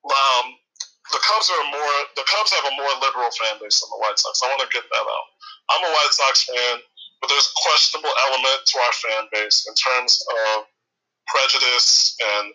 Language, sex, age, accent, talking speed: English, male, 30-49, American, 195 wpm